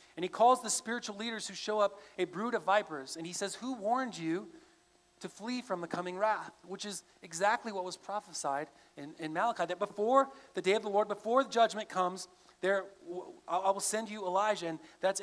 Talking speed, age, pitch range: 210 wpm, 40-59, 170-215 Hz